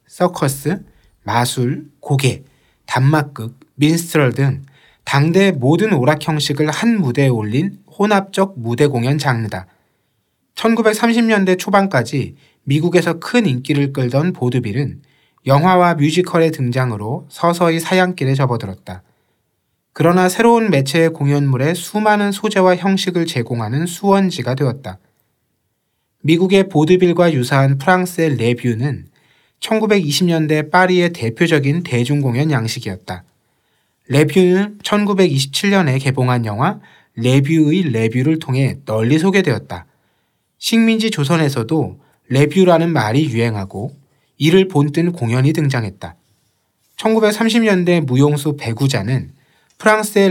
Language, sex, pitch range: Korean, male, 130-180 Hz